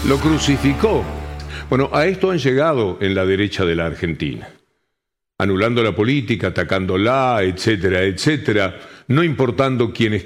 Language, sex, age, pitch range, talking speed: Spanish, male, 50-69, 100-140 Hz, 135 wpm